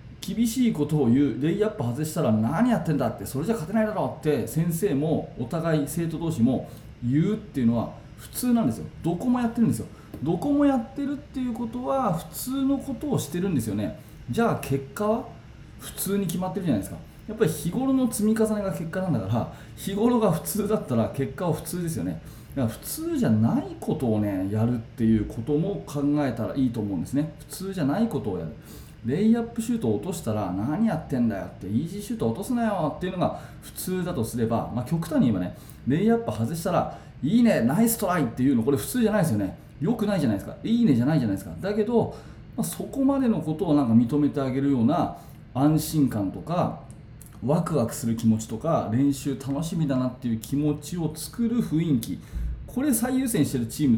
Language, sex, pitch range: Japanese, male, 135-220 Hz